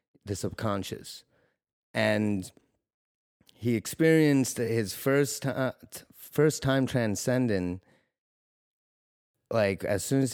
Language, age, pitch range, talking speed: English, 30-49, 100-120 Hz, 80 wpm